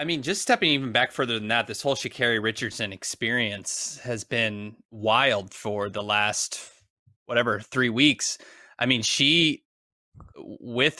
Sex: male